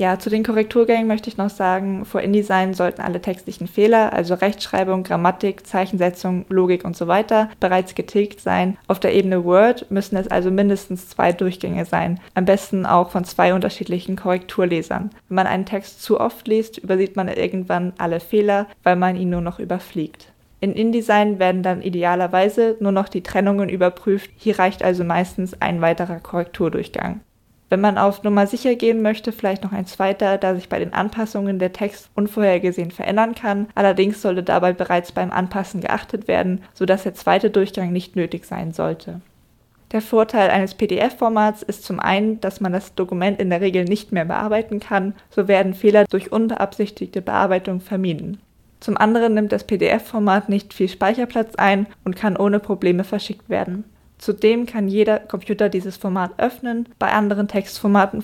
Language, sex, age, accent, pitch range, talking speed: German, female, 20-39, German, 185-210 Hz, 170 wpm